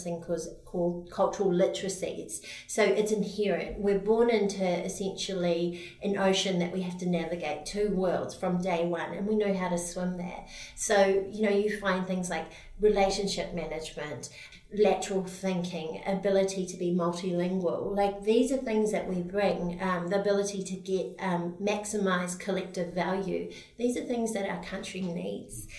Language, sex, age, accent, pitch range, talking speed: English, female, 40-59, Australian, 175-200 Hz, 160 wpm